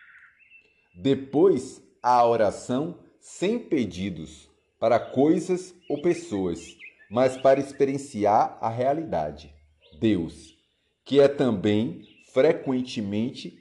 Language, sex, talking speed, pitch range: Portuguese, male, 85 wpm, 110-175 Hz